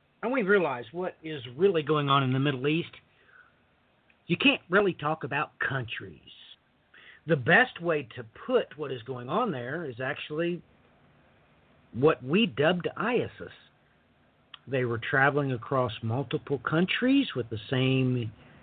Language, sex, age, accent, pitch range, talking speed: English, male, 50-69, American, 130-195 Hz, 140 wpm